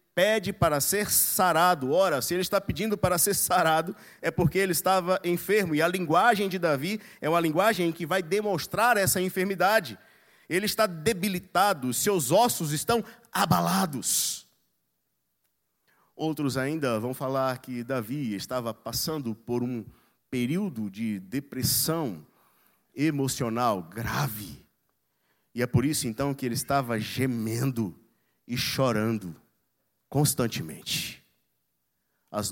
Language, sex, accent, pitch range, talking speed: Portuguese, male, Brazilian, 110-160 Hz, 120 wpm